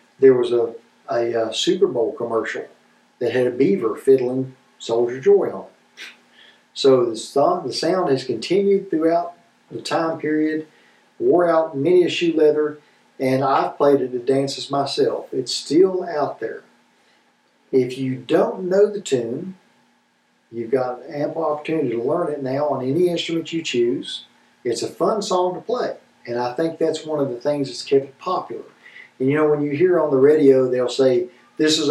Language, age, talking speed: English, 50-69, 180 wpm